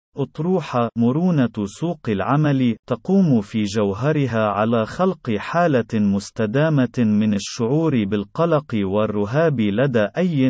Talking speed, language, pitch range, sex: 95 wpm, Arabic, 110-150 Hz, male